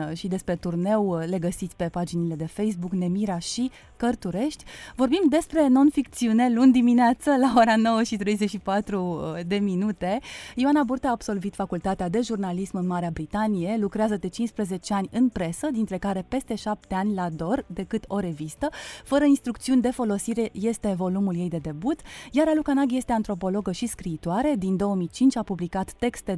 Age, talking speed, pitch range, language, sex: 30-49, 160 wpm, 190-260 Hz, Romanian, female